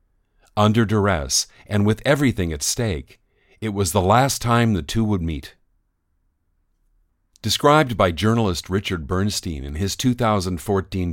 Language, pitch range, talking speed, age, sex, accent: English, 90-115 Hz, 130 wpm, 50-69, male, American